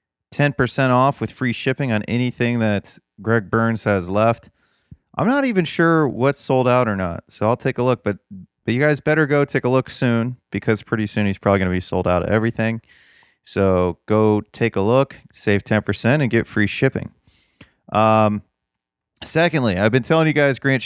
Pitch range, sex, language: 100-125 Hz, male, English